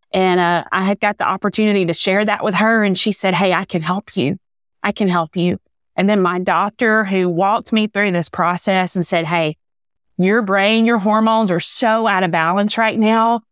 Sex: female